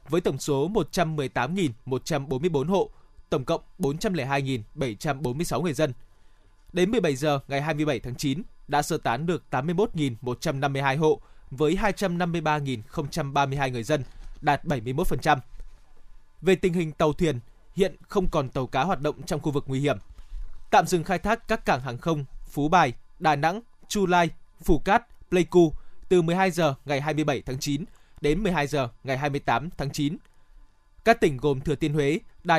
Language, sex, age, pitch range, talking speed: Vietnamese, male, 20-39, 140-175 Hz, 155 wpm